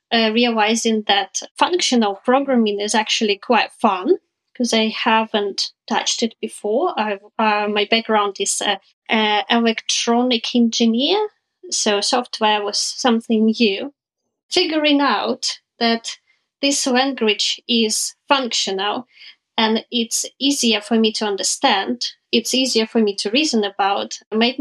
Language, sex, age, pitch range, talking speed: English, female, 20-39, 220-270 Hz, 130 wpm